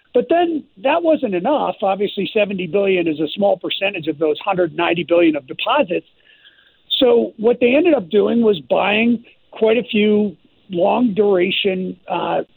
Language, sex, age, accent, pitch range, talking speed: English, male, 50-69, American, 180-245 Hz, 165 wpm